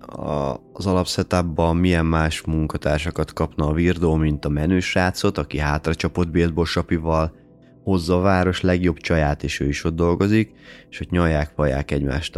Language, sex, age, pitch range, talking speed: Hungarian, male, 30-49, 75-90 Hz, 145 wpm